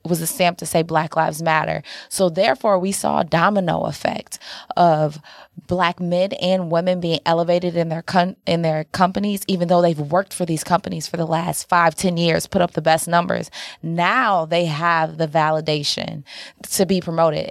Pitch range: 155-180 Hz